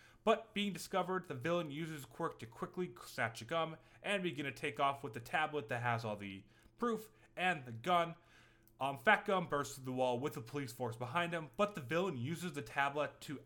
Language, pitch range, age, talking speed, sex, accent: English, 125-175 Hz, 20-39, 215 wpm, male, American